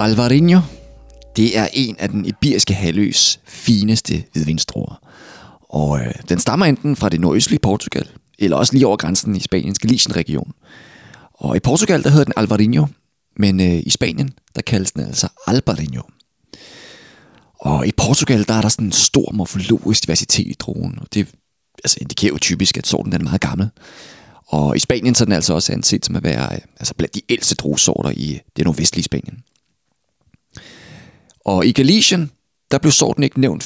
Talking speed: 175 wpm